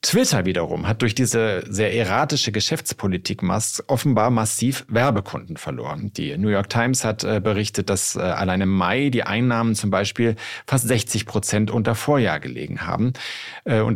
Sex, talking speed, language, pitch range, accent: male, 150 wpm, German, 100-125 Hz, German